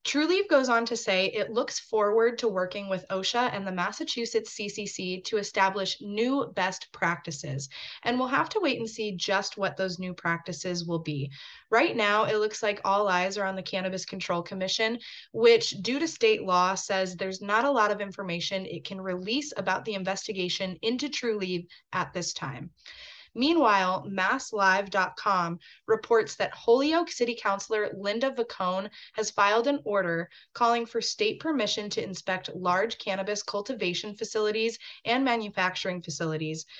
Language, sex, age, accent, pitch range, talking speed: English, female, 20-39, American, 185-235 Hz, 160 wpm